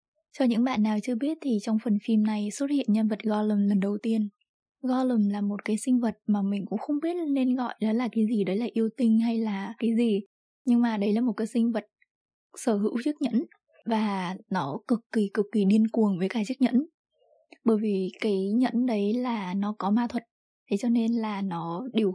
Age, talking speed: 20-39, 225 wpm